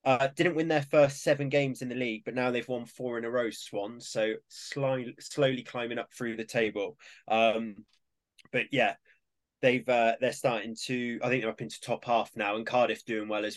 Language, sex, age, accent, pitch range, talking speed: English, male, 20-39, British, 105-125 Hz, 210 wpm